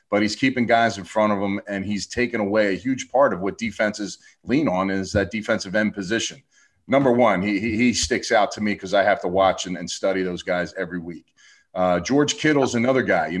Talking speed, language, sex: 230 wpm, English, male